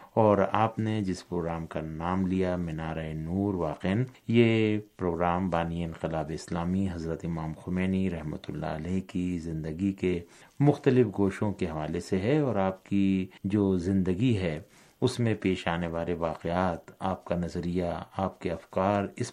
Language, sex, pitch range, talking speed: Urdu, male, 85-100 Hz, 155 wpm